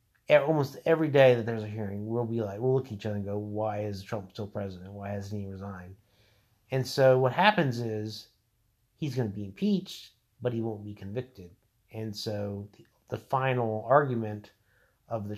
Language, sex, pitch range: English, male, 105-125 Hz